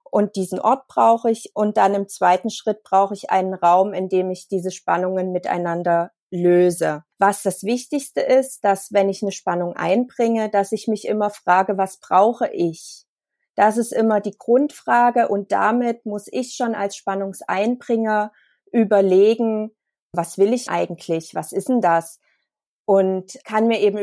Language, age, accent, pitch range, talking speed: German, 30-49, German, 185-225 Hz, 160 wpm